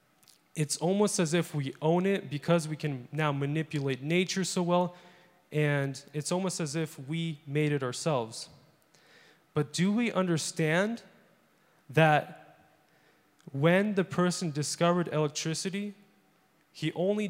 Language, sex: English, male